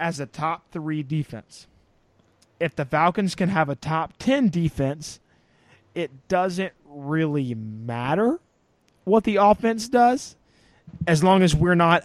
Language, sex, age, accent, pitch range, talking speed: English, male, 20-39, American, 140-185 Hz, 135 wpm